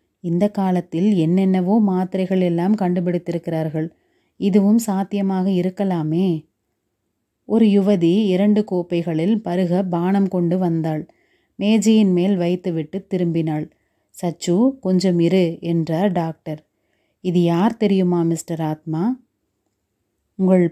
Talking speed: 95 wpm